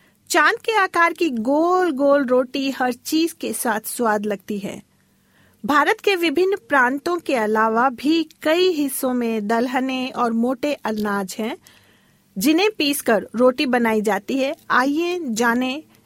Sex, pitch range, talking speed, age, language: female, 230-300 Hz, 140 wpm, 40-59, Hindi